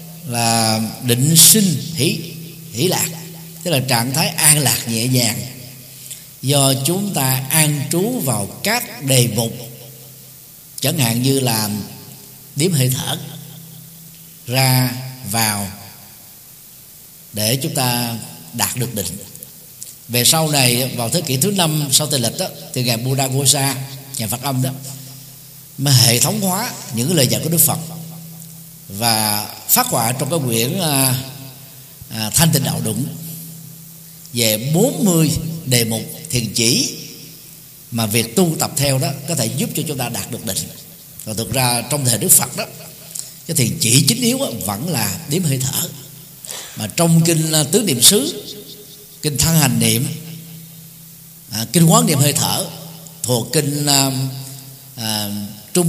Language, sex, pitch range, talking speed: Vietnamese, male, 125-160 Hz, 150 wpm